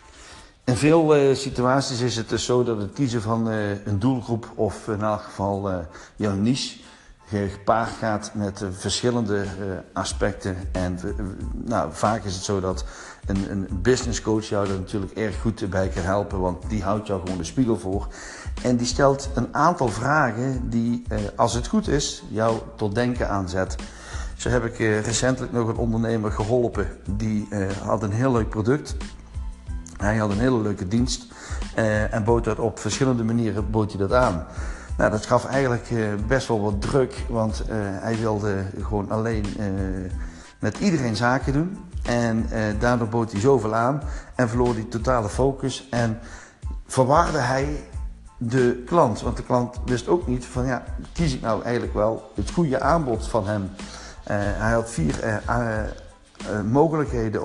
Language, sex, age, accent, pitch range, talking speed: Dutch, male, 50-69, Dutch, 100-125 Hz, 170 wpm